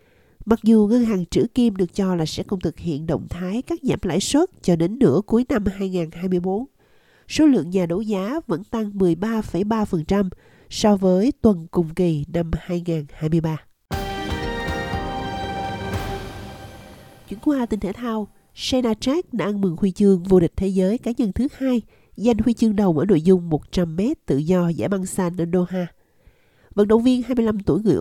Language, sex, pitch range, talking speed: Vietnamese, female, 170-220 Hz, 175 wpm